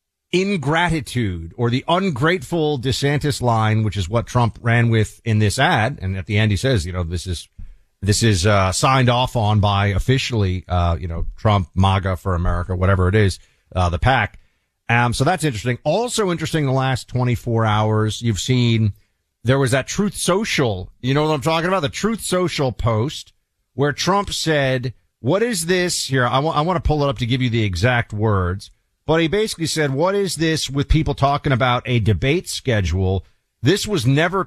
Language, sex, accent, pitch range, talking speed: English, male, American, 110-150 Hz, 195 wpm